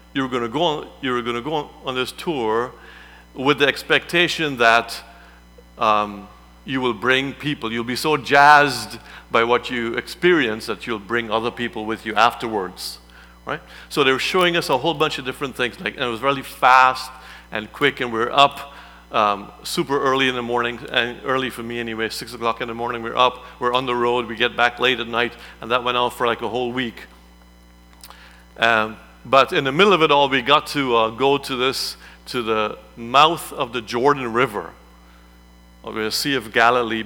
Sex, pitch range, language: male, 105-130 Hz, English